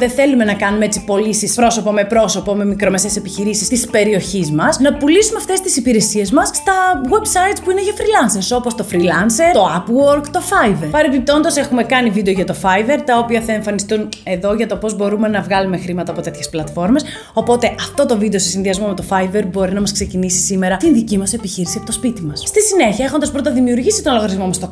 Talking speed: 210 wpm